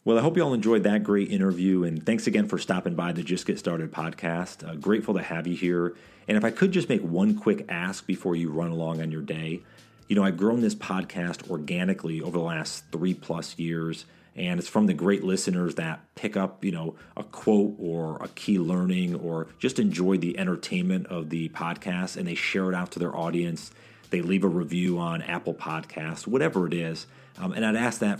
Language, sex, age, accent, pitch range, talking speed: English, male, 40-59, American, 85-105 Hz, 220 wpm